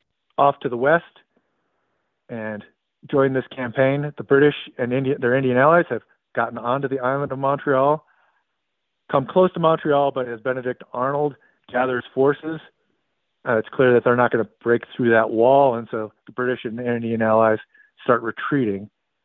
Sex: male